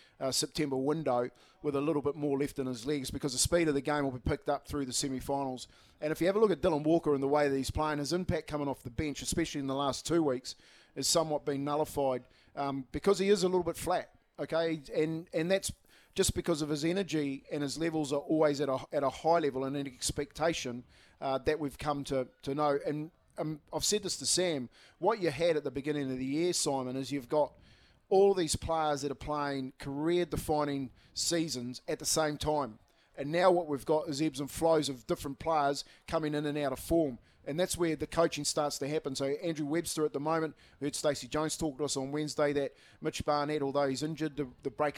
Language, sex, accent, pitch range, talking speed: English, male, Australian, 140-160 Hz, 230 wpm